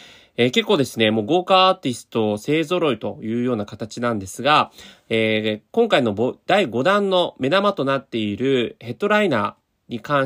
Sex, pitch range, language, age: male, 115-180 Hz, Japanese, 30-49